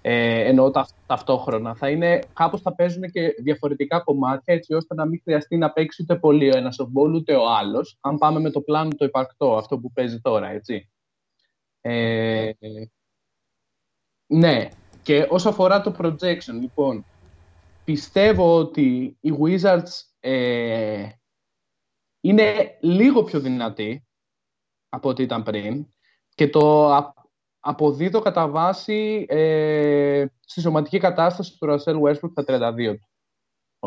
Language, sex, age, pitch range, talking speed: Greek, male, 20-39, 115-165 Hz, 120 wpm